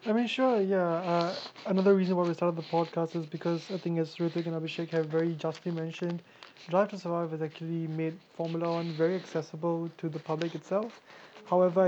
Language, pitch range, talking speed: English, 160-175 Hz, 195 wpm